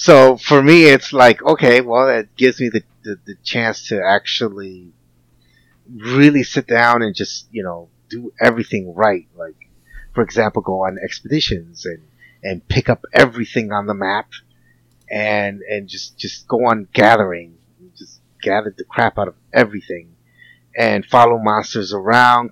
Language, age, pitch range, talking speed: English, 30-49, 85-120 Hz, 155 wpm